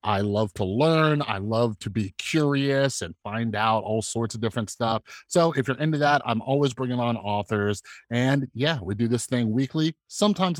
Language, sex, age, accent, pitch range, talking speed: English, male, 30-49, American, 105-140 Hz, 200 wpm